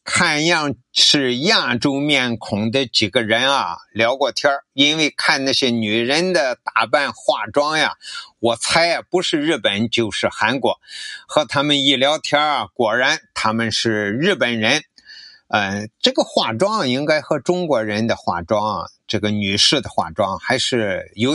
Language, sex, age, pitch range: Chinese, male, 50-69, 115-150 Hz